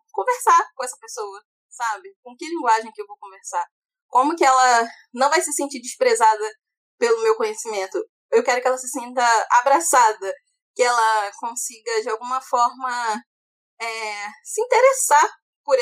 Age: 10-29